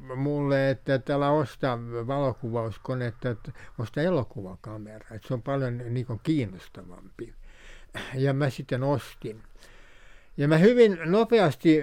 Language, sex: Finnish, male